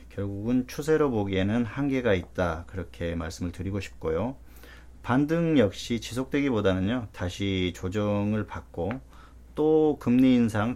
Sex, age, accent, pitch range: male, 40-59, native, 90-120 Hz